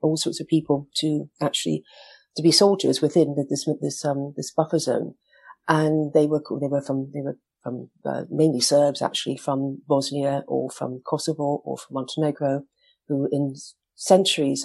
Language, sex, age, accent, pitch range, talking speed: English, female, 40-59, British, 145-165 Hz, 170 wpm